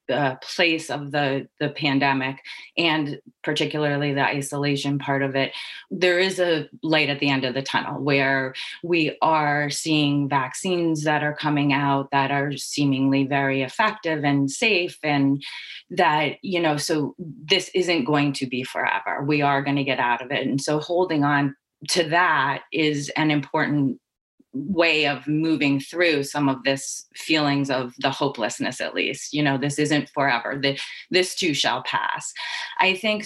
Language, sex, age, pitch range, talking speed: English, female, 30-49, 140-165 Hz, 165 wpm